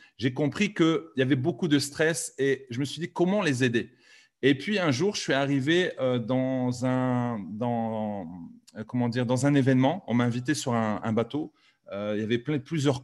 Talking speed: 200 wpm